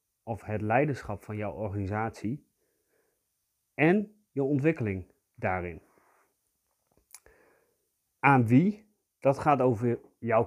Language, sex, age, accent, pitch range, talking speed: Dutch, male, 40-59, Dutch, 105-135 Hz, 90 wpm